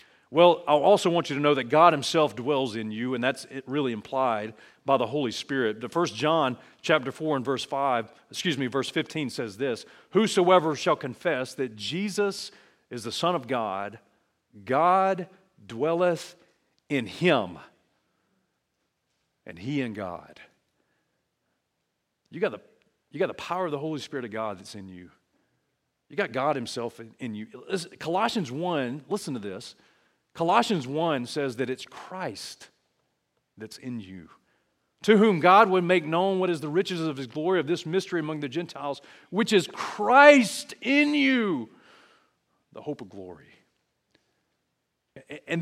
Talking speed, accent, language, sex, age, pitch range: 160 wpm, American, English, male, 40-59, 125-175 Hz